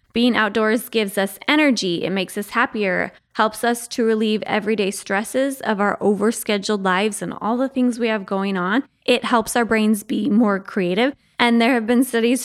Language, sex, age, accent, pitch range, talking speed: English, female, 20-39, American, 215-270 Hz, 190 wpm